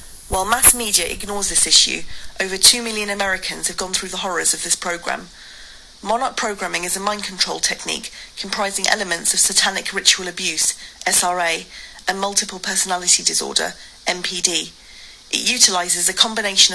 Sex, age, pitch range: female, 30-49, 180-205 Hz